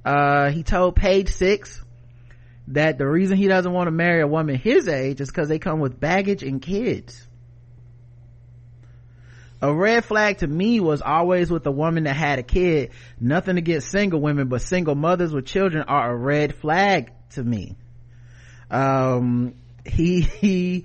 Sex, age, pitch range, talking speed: male, 30-49, 125-160 Hz, 165 wpm